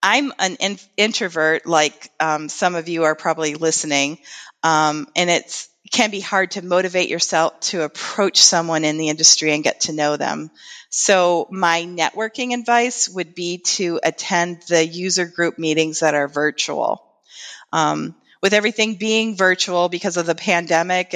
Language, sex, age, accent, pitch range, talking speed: English, female, 40-59, American, 165-205 Hz, 155 wpm